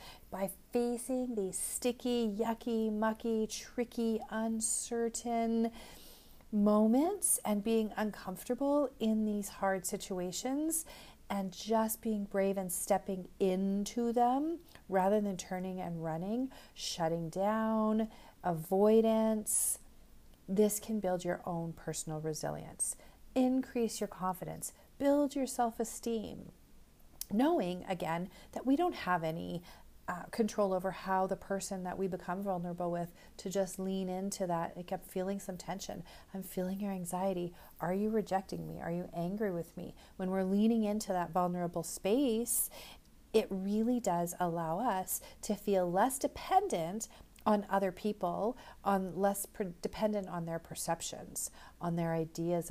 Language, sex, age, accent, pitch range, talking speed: English, female, 40-59, American, 180-225 Hz, 130 wpm